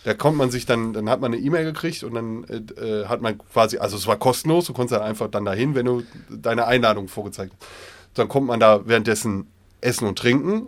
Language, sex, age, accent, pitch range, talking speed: English, male, 30-49, German, 100-125 Hz, 230 wpm